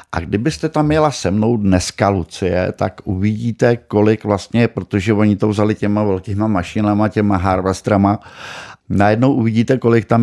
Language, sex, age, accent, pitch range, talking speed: Czech, male, 50-69, native, 95-110 Hz, 145 wpm